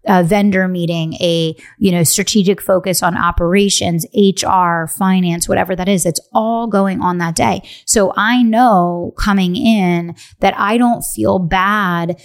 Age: 30-49